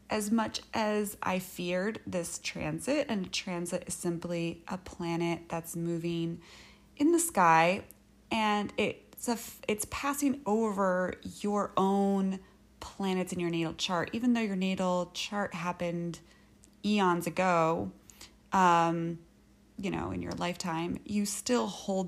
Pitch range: 170-200 Hz